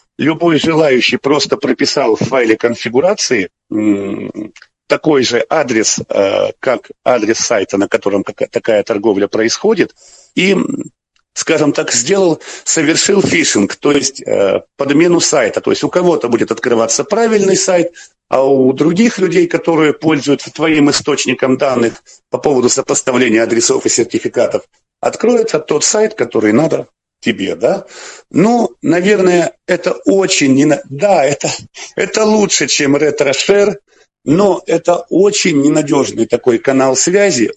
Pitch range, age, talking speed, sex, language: 135-200 Hz, 50-69, 120 wpm, male, Russian